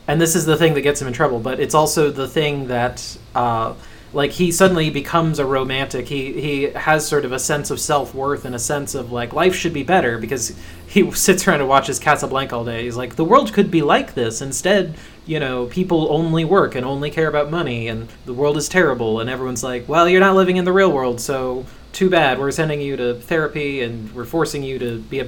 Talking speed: 235 wpm